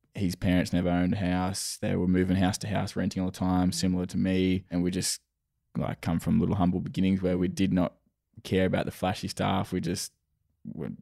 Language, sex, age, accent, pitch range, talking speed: English, male, 20-39, Australian, 90-100 Hz, 220 wpm